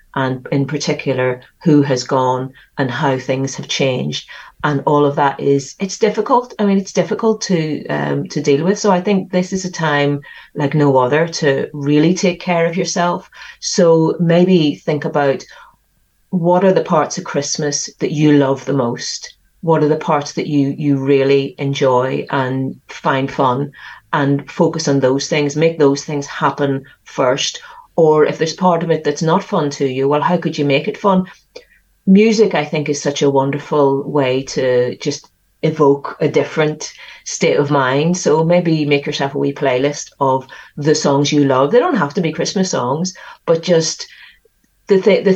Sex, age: female, 40-59